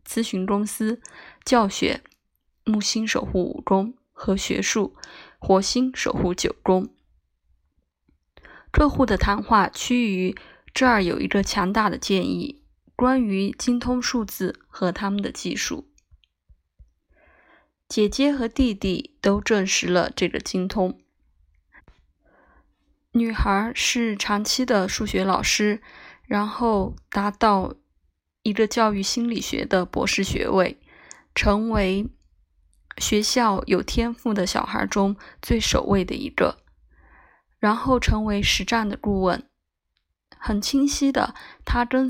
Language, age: Chinese, 20-39